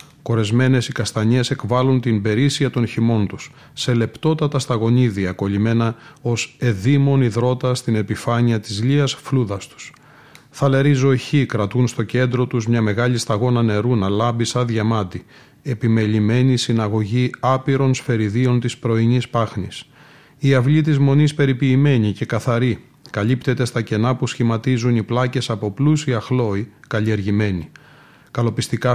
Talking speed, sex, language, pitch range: 130 wpm, male, Greek, 115-135 Hz